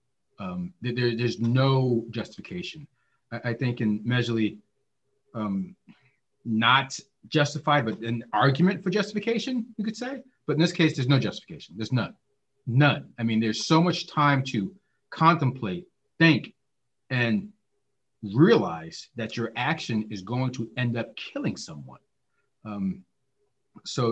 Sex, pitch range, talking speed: male, 110-160 Hz, 130 wpm